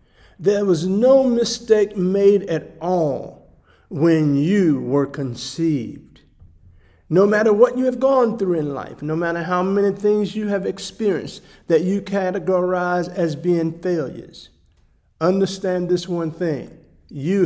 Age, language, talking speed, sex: 50-69, English, 135 wpm, male